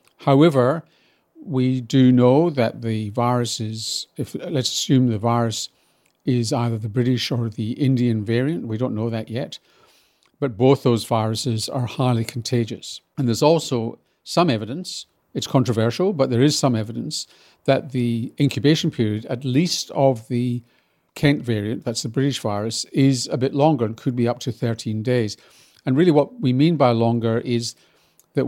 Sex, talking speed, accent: male, 165 wpm, British